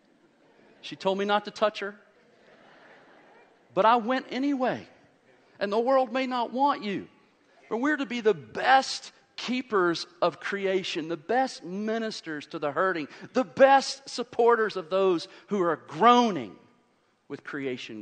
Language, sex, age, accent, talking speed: English, male, 40-59, American, 145 wpm